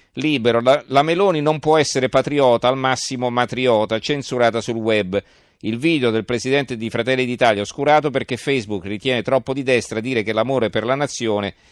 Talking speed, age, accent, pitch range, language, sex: 170 wpm, 40-59, native, 105-130 Hz, Italian, male